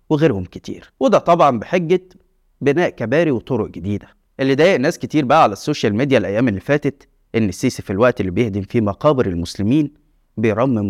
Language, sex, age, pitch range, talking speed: Arabic, male, 20-39, 110-155 Hz, 165 wpm